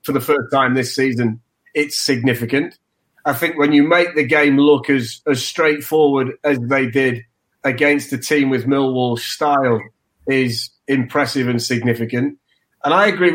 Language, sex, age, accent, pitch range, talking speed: English, male, 30-49, British, 130-150 Hz, 155 wpm